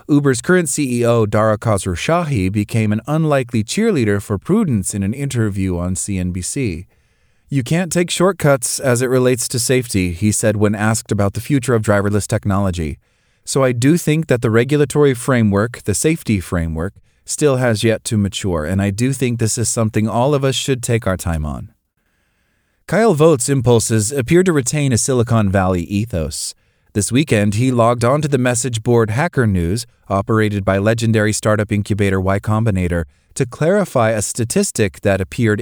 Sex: male